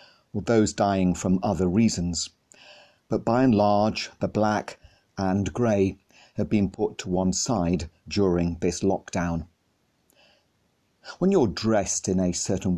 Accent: British